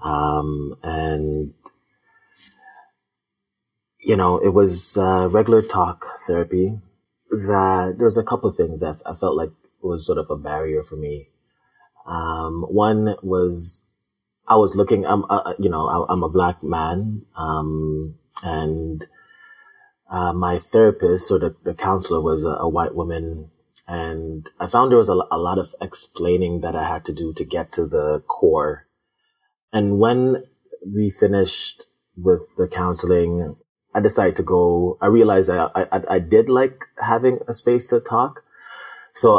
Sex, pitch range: male, 80-115 Hz